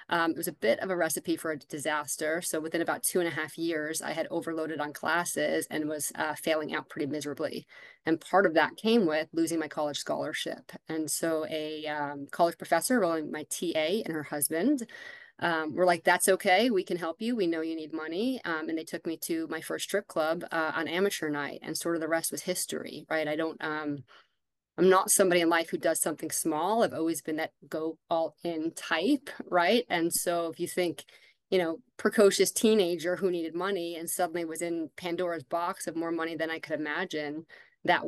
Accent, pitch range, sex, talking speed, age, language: American, 155-180 Hz, female, 215 wpm, 30-49, English